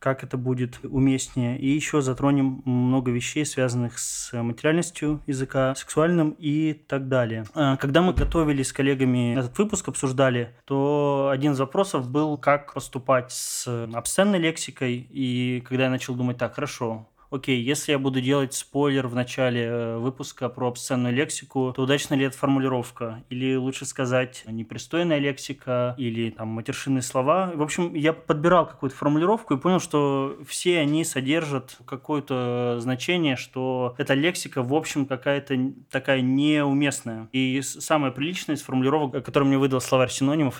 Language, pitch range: Russian, 130-150 Hz